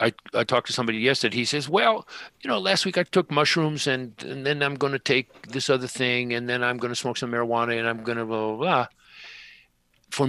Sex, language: male, English